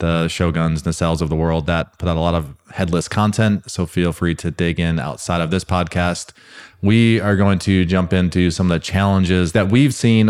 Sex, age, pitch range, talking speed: male, 20-39, 85-100 Hz, 220 wpm